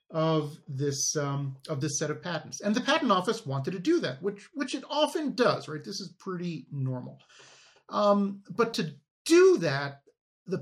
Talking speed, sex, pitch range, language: 180 wpm, male, 140-200 Hz, English